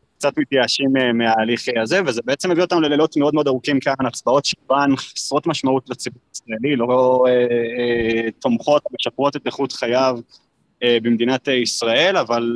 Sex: male